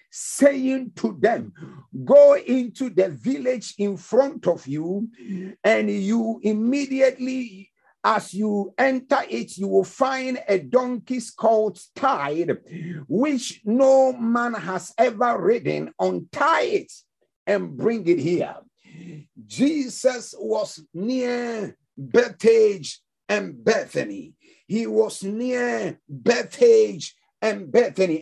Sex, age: male, 50-69